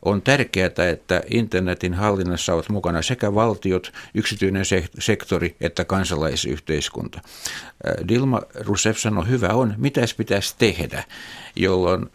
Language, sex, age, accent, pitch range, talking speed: Finnish, male, 60-79, native, 90-110 Hz, 110 wpm